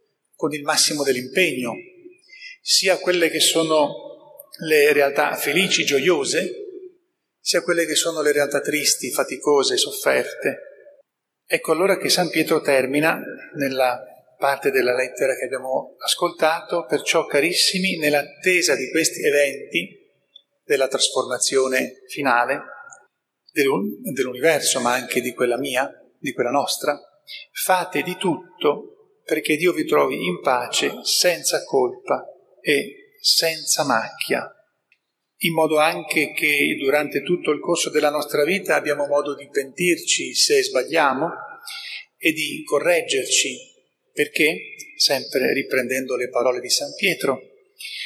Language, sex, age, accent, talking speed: Italian, male, 40-59, native, 115 wpm